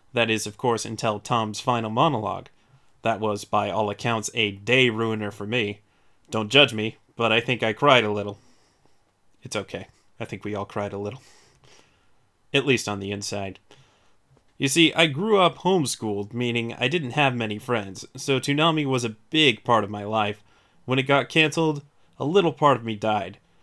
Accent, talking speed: American, 185 wpm